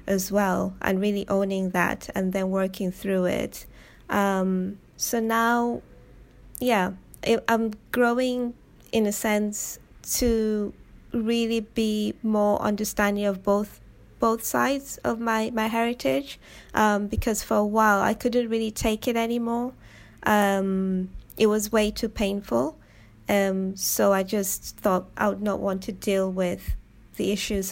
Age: 20-39